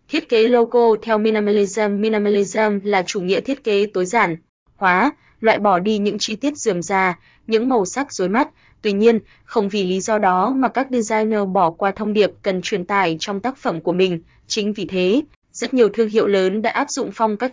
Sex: female